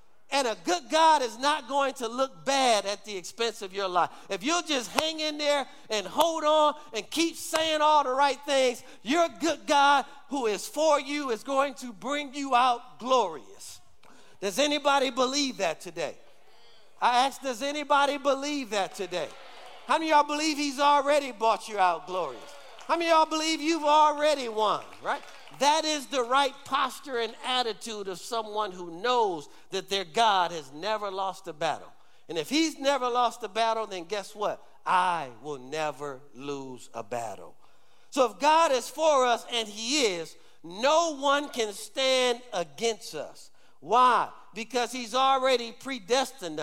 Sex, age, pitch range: male, 50-69, 215-285 Hz